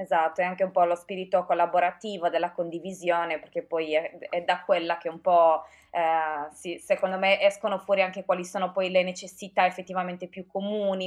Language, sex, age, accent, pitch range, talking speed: Italian, female, 20-39, native, 175-200 Hz, 185 wpm